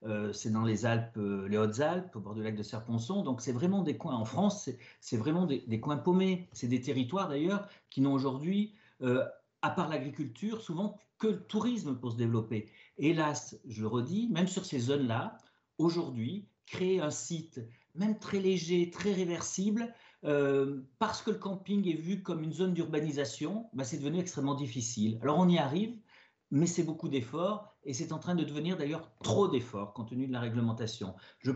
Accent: French